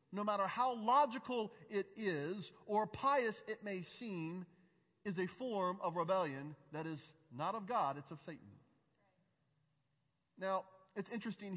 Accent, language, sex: American, English, male